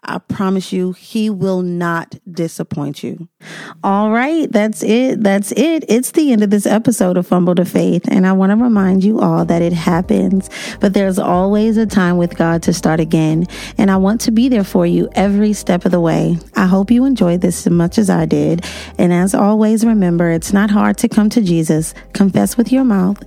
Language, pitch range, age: English, 175-215 Hz, 30-49